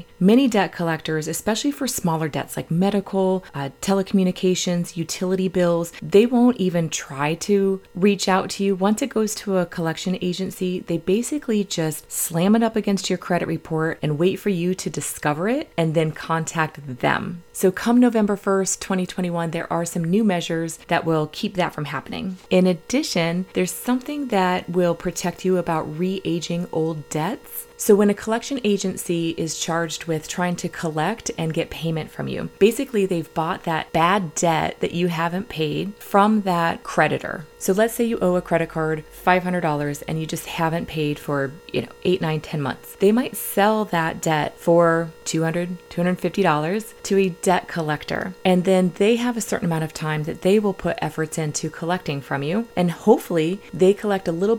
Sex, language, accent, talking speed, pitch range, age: female, English, American, 180 wpm, 165-200 Hz, 30-49